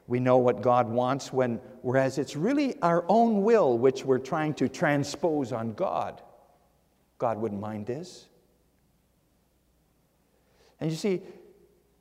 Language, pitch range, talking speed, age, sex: English, 130-215 Hz, 130 wpm, 50-69, male